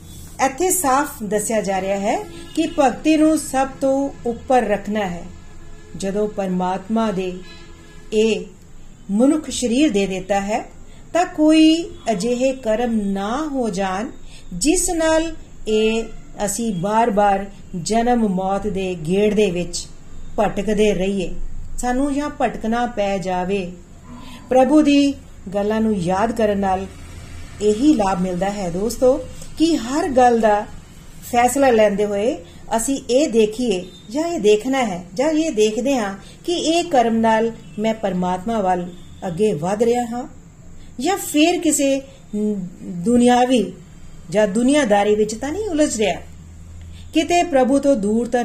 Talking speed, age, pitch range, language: 120 wpm, 40-59, 195-260 Hz, Punjabi